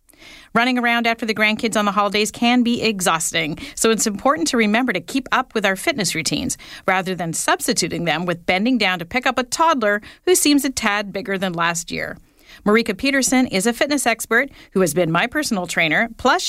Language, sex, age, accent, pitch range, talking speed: English, female, 40-59, American, 190-245 Hz, 205 wpm